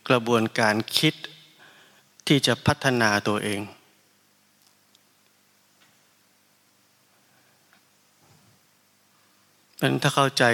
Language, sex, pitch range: Thai, male, 110-125 Hz